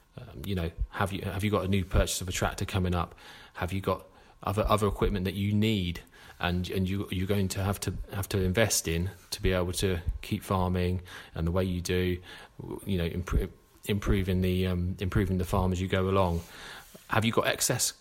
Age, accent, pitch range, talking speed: 30-49, British, 90-100 Hz, 215 wpm